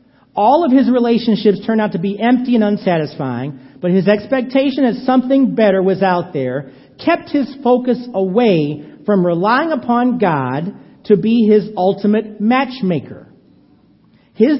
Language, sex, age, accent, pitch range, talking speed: English, male, 50-69, American, 130-220 Hz, 140 wpm